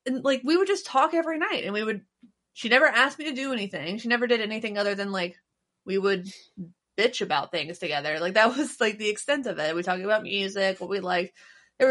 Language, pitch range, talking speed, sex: English, 195-260 Hz, 235 wpm, female